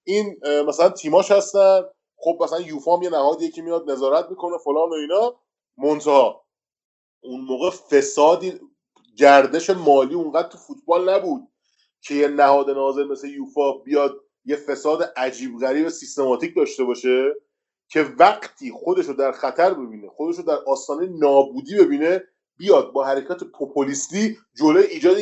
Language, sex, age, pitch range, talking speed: Persian, male, 30-49, 145-230 Hz, 140 wpm